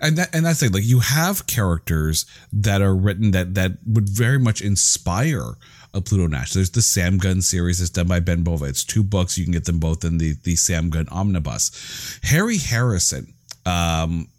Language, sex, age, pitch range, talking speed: English, male, 40-59, 90-120 Hz, 200 wpm